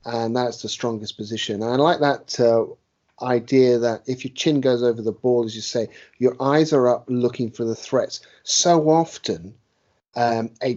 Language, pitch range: English, 110-135 Hz